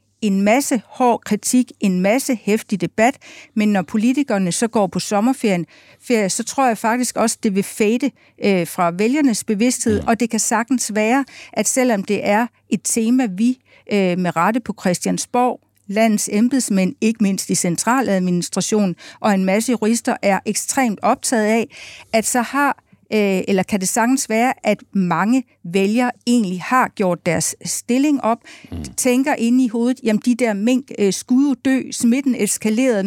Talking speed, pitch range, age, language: 155 wpm, 200-250 Hz, 50-69, Danish